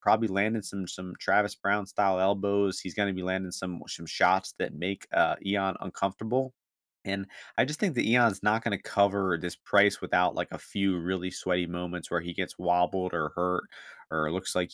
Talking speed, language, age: 200 wpm, English, 20-39